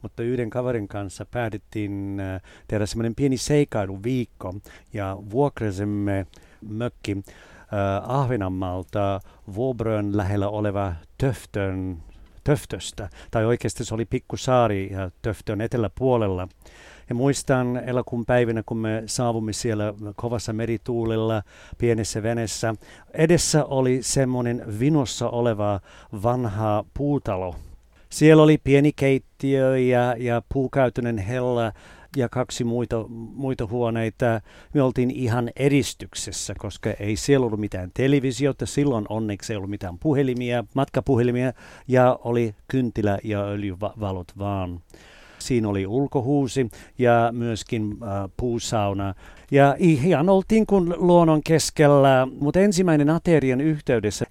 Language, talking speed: Finnish, 105 wpm